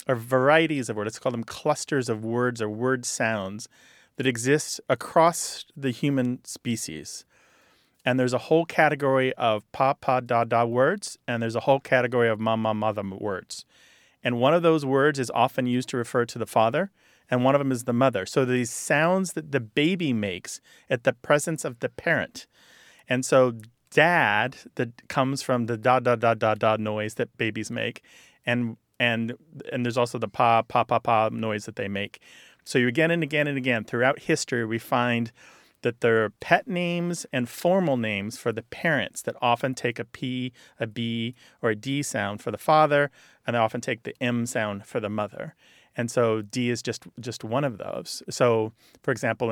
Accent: American